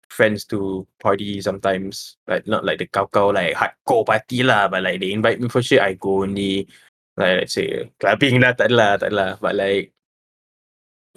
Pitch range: 100-120 Hz